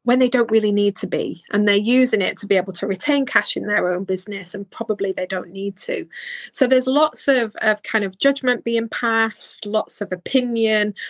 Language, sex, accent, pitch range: English, female, British, 185-230 Hz